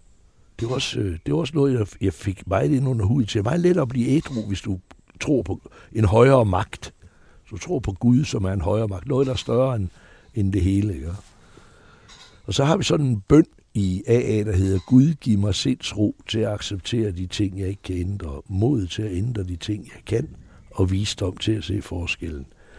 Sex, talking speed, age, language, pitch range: male, 220 wpm, 60-79, Danish, 95-130 Hz